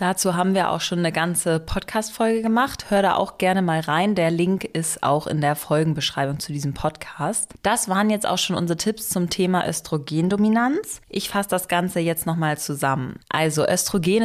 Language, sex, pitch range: German, female, 165-195 Hz